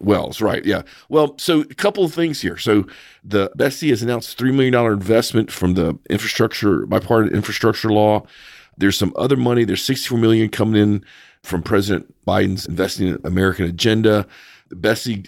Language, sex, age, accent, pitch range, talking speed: English, male, 40-59, American, 90-110 Hz, 165 wpm